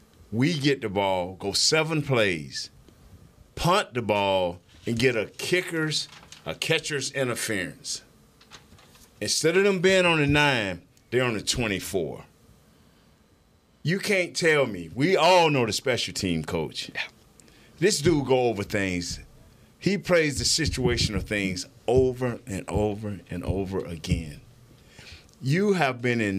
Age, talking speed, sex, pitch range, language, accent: 50-69, 135 wpm, male, 100-140 Hz, English, American